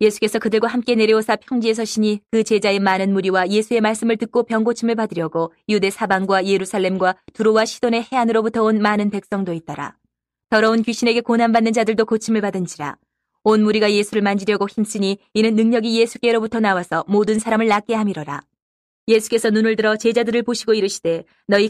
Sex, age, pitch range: female, 20-39, 200-230 Hz